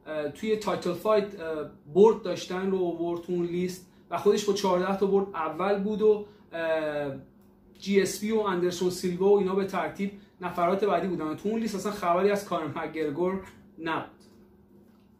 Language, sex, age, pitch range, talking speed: Persian, male, 30-49, 170-205 Hz, 160 wpm